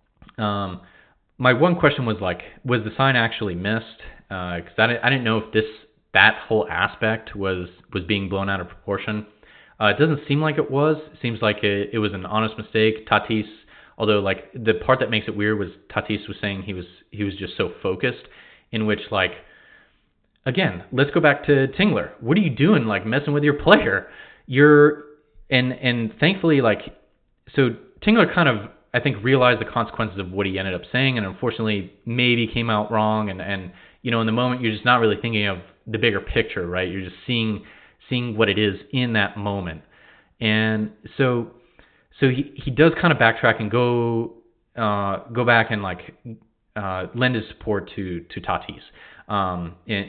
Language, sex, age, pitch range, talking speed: English, male, 30-49, 100-125 Hz, 195 wpm